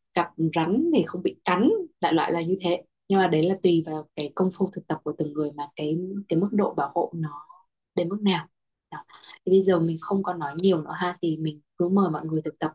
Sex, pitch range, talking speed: female, 160-190 Hz, 260 wpm